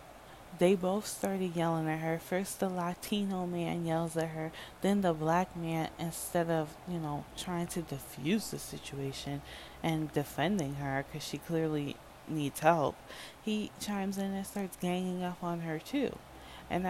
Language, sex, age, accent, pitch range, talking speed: English, female, 10-29, American, 155-185 Hz, 160 wpm